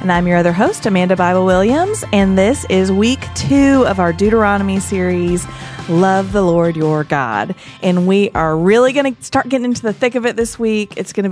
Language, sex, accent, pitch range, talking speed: English, female, American, 160-205 Hz, 210 wpm